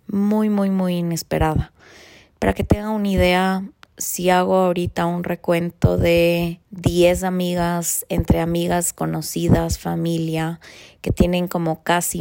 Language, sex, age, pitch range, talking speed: Spanish, female, 20-39, 105-175 Hz, 125 wpm